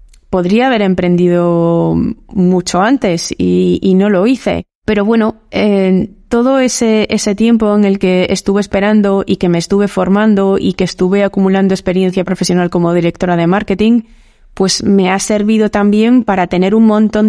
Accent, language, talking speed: Spanish, Spanish, 160 wpm